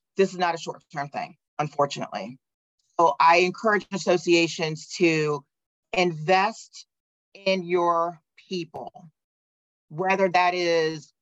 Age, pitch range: 40-59, 155-185 Hz